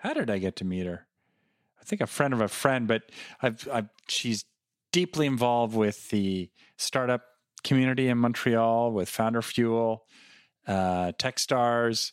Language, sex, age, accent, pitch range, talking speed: English, male, 40-59, American, 95-130 Hz, 155 wpm